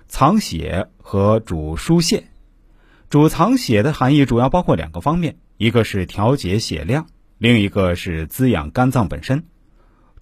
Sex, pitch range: male, 95-150 Hz